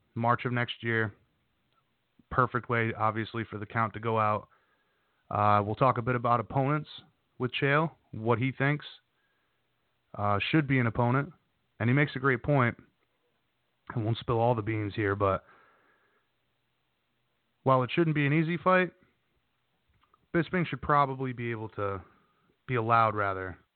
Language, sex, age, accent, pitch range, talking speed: English, male, 30-49, American, 110-135 Hz, 150 wpm